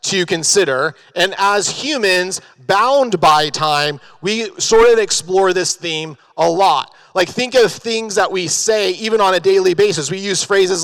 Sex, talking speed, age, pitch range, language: male, 170 wpm, 30-49, 170-220 Hz, English